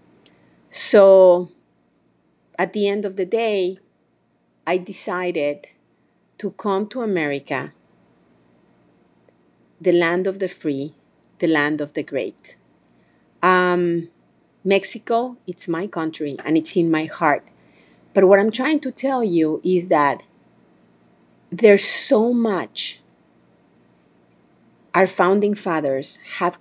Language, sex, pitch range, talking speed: English, female, 150-195 Hz, 110 wpm